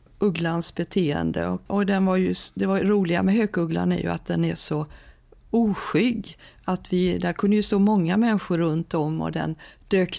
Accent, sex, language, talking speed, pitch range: native, female, Swedish, 190 wpm, 160-195 Hz